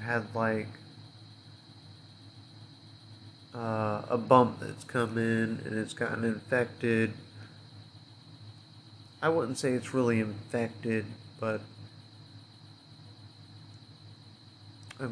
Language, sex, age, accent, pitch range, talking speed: English, male, 30-49, American, 110-125 Hz, 80 wpm